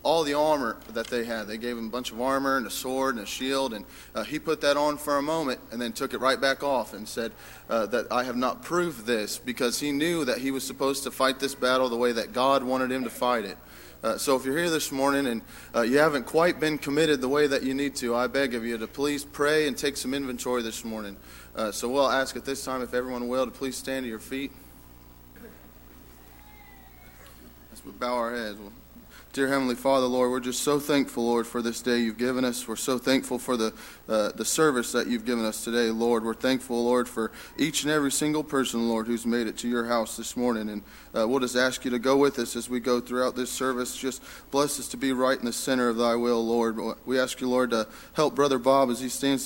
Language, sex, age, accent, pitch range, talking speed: English, male, 30-49, American, 115-135 Hz, 250 wpm